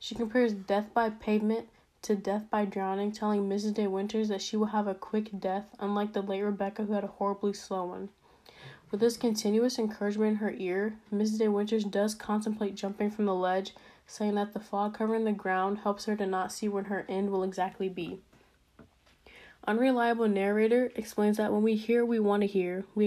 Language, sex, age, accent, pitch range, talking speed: English, female, 10-29, American, 195-220 Hz, 200 wpm